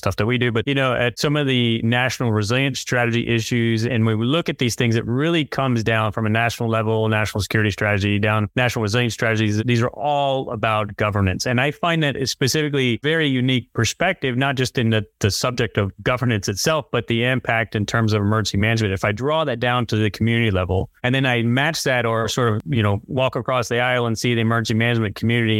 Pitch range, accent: 110-125 Hz, American